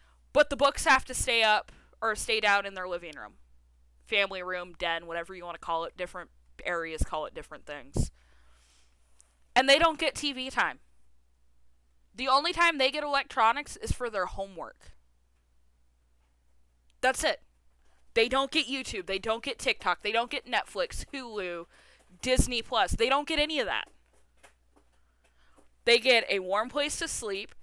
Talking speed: 165 wpm